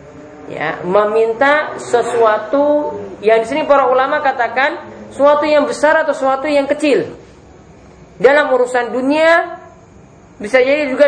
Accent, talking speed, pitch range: Indonesian, 120 wpm, 180-250 Hz